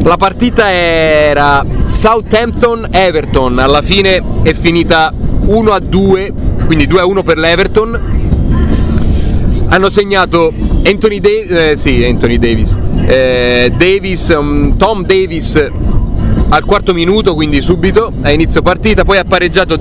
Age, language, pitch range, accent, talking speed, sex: 30-49, Italian, 135-195 Hz, native, 110 wpm, male